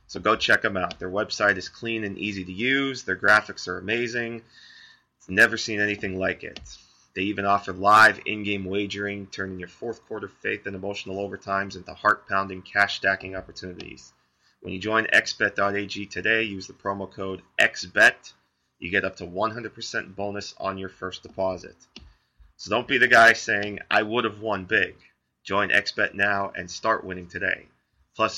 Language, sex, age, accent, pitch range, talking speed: English, male, 30-49, American, 95-110 Hz, 165 wpm